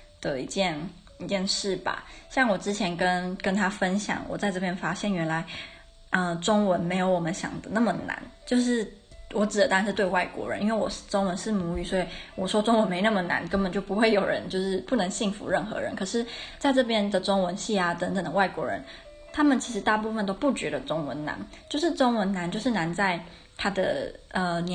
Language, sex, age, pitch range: Chinese, female, 20-39, 185-225 Hz